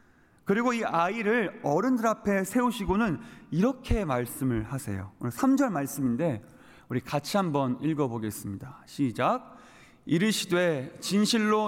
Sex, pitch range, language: male, 145-225 Hz, Korean